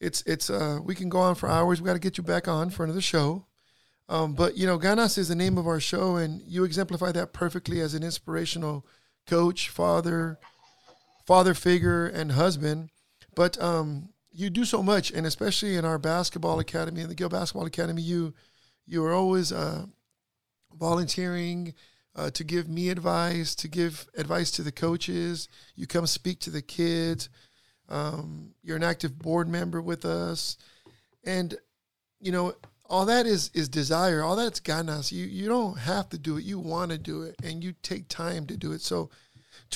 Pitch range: 155-180 Hz